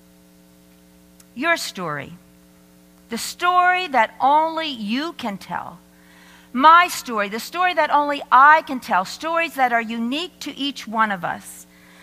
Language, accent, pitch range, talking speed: English, American, 190-295 Hz, 135 wpm